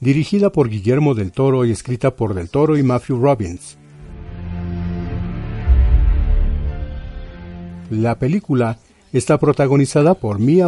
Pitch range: 100-140 Hz